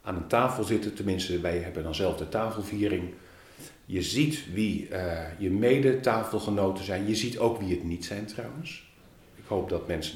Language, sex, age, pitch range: Dutch, male, 40-59, 90-120 Hz